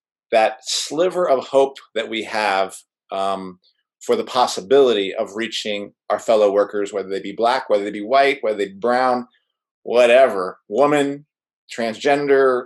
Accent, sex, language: American, male, English